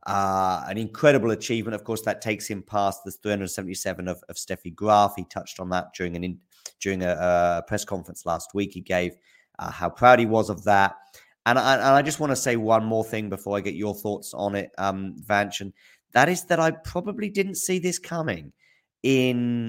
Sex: male